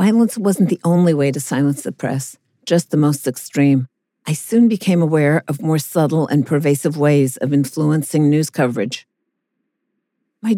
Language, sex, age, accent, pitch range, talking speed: English, female, 50-69, American, 145-185 Hz, 160 wpm